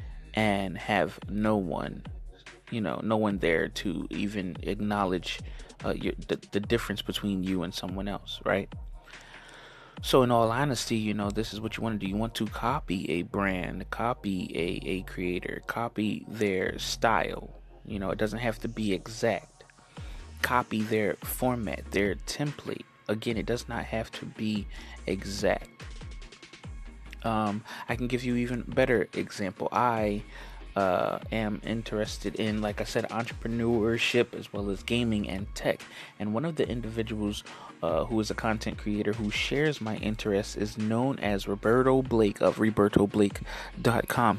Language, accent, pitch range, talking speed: English, American, 100-115 Hz, 155 wpm